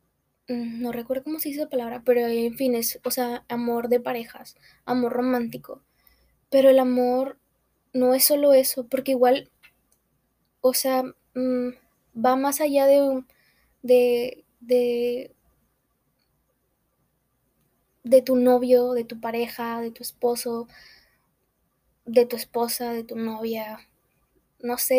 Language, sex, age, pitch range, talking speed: Spanish, female, 10-29, 240-265 Hz, 125 wpm